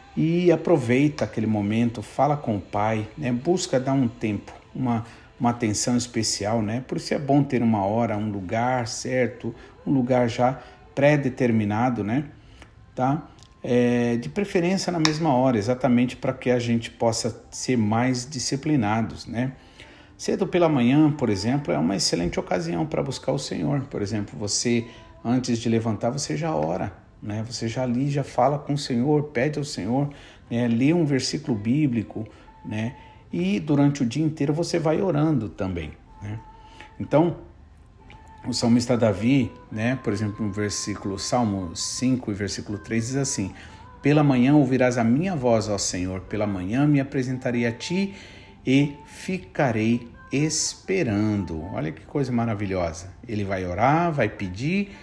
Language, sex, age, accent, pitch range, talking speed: Portuguese, male, 50-69, Brazilian, 105-140 Hz, 155 wpm